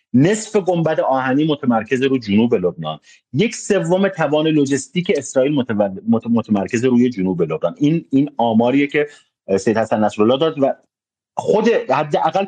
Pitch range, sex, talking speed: 110-160 Hz, male, 130 wpm